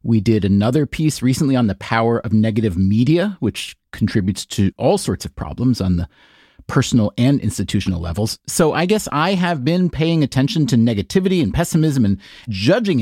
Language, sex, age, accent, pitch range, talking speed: English, male, 40-59, American, 110-155 Hz, 175 wpm